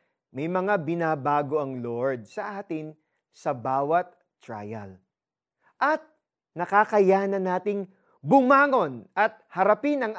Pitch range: 160-220 Hz